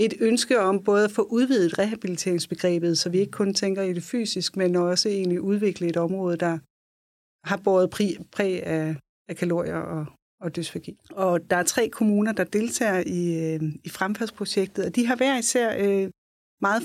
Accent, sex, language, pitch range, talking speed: native, female, Danish, 185-215 Hz, 160 wpm